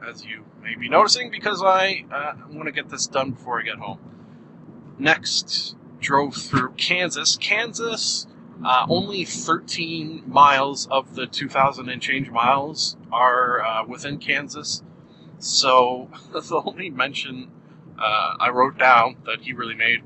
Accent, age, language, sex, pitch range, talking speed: American, 30-49, English, male, 125-155 Hz, 140 wpm